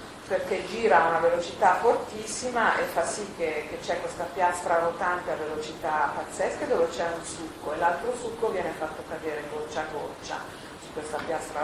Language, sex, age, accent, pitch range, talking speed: Italian, female, 40-59, native, 155-190 Hz, 175 wpm